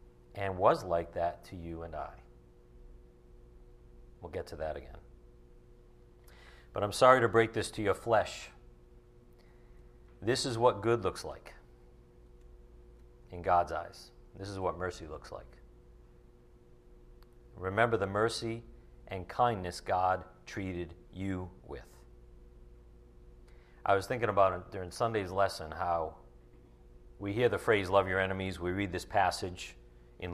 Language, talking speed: English, 135 wpm